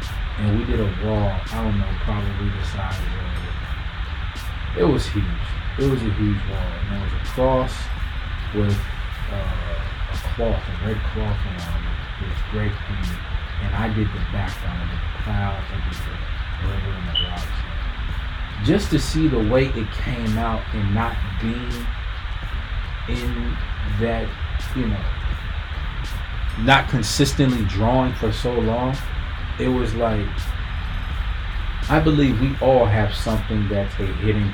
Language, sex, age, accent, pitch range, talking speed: English, male, 30-49, American, 85-105 Hz, 150 wpm